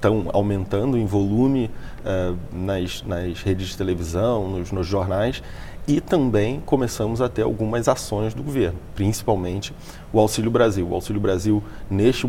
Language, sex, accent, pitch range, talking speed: English, male, Brazilian, 100-130 Hz, 140 wpm